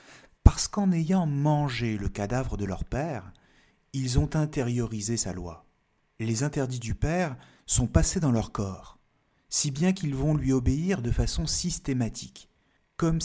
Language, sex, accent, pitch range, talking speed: French, male, French, 105-145 Hz, 150 wpm